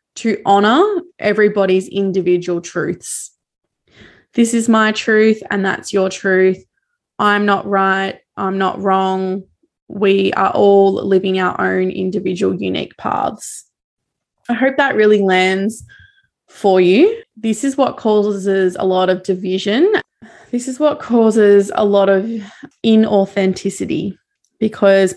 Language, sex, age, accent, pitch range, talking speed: English, female, 20-39, Australian, 190-220 Hz, 125 wpm